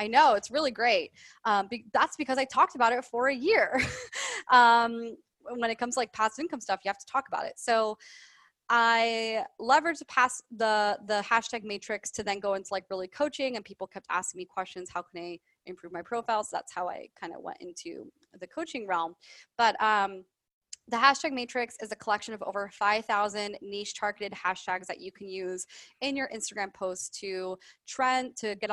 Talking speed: 200 wpm